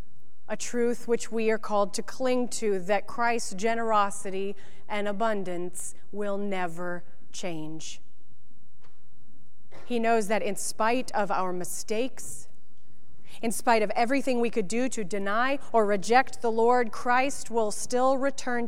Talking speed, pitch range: 135 wpm, 205-240 Hz